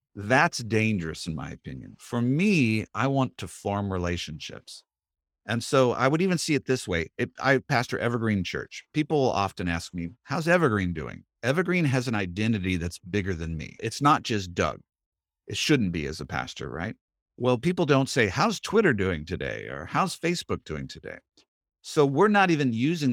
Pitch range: 90-130 Hz